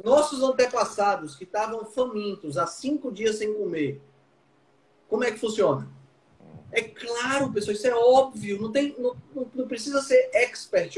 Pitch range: 170-265 Hz